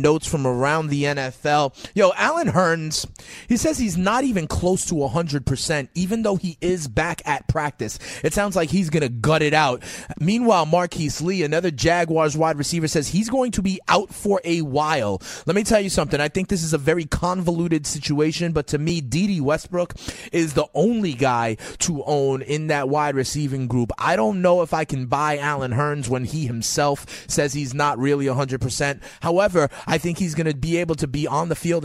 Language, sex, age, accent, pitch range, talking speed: English, male, 30-49, American, 145-175 Hz, 200 wpm